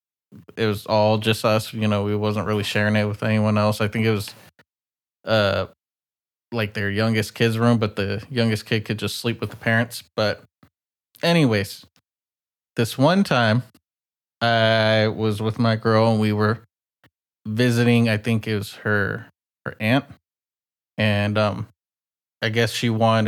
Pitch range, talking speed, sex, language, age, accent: 105-120 Hz, 160 wpm, male, English, 20-39, American